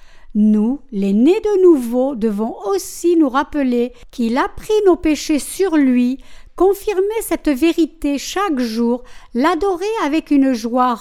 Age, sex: 60-79, female